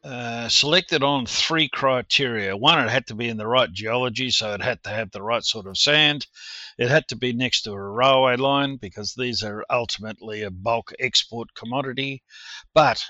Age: 50-69